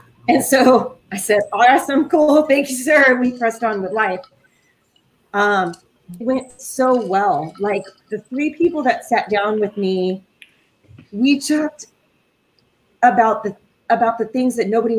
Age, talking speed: 30-49, 150 wpm